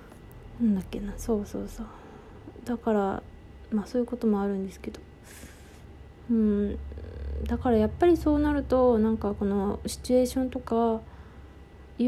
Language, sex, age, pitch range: Japanese, female, 20-39, 205-250 Hz